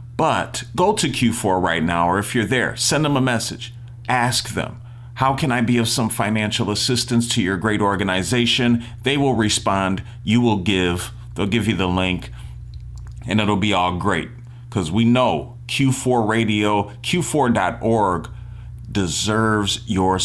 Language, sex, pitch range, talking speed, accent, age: English, male, 105-120 Hz, 155 wpm, American, 40-59